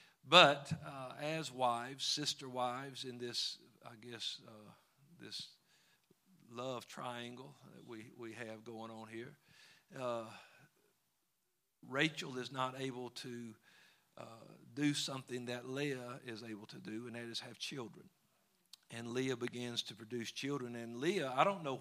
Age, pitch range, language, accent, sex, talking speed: 50-69, 120-135 Hz, English, American, male, 145 wpm